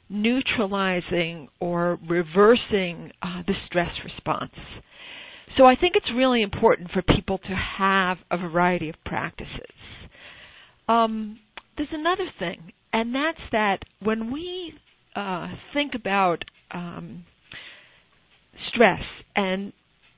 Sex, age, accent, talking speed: female, 50-69, American, 105 wpm